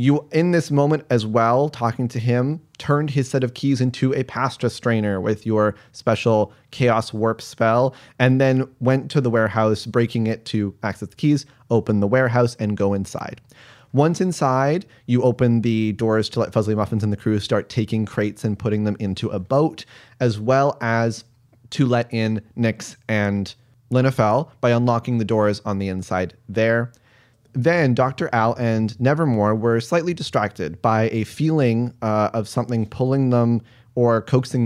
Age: 30-49